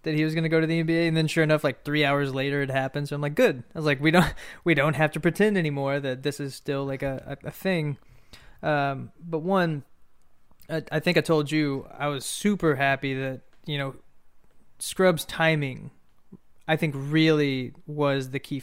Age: 20-39